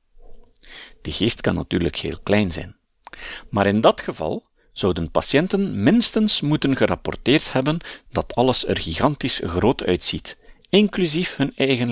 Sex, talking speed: male, 130 wpm